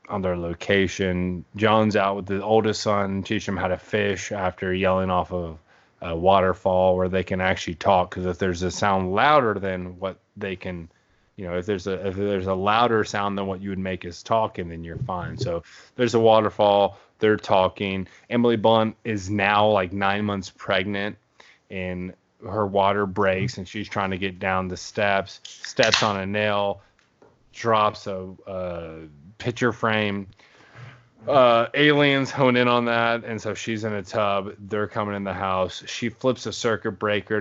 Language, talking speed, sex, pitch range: English, 180 wpm, male, 95-105 Hz